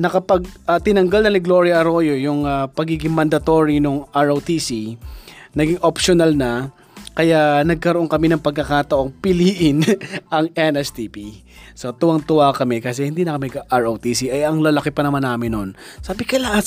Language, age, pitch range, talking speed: Filipino, 20-39, 140-180 Hz, 155 wpm